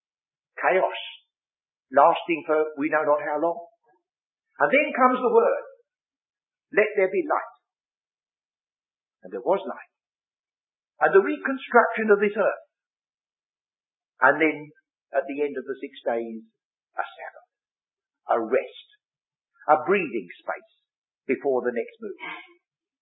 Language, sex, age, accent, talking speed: English, male, 50-69, British, 125 wpm